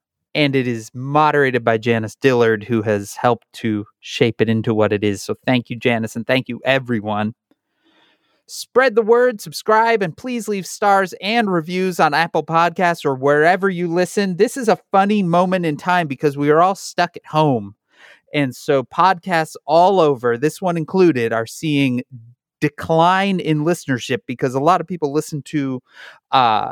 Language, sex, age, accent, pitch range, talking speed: English, male, 30-49, American, 125-175 Hz, 175 wpm